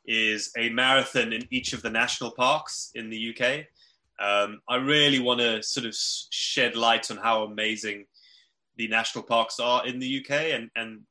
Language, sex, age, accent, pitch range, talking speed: English, male, 20-39, British, 105-125 Hz, 180 wpm